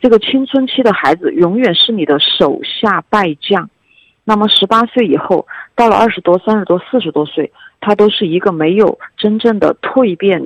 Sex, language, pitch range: female, Chinese, 180-245 Hz